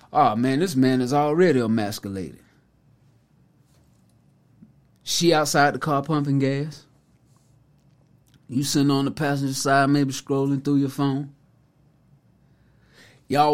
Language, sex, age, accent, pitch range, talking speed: English, male, 20-39, American, 135-160 Hz, 110 wpm